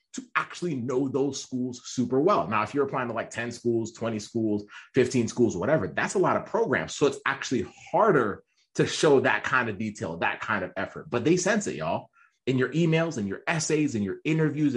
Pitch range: 115-150 Hz